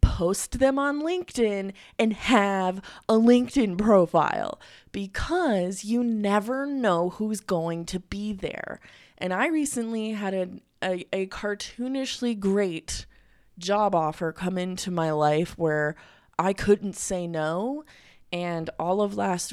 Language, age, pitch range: English, 20-39, 165-220 Hz